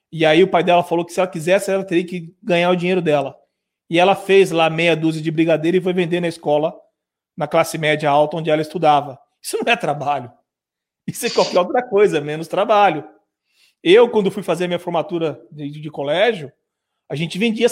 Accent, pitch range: Brazilian, 155-195 Hz